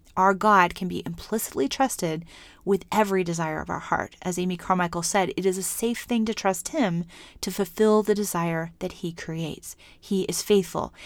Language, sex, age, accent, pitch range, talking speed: English, female, 30-49, American, 175-210 Hz, 185 wpm